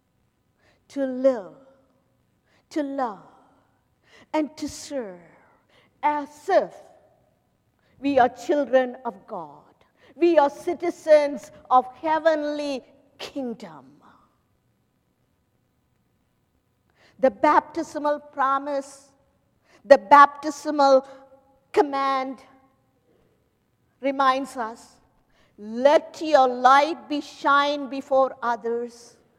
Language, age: English, 50-69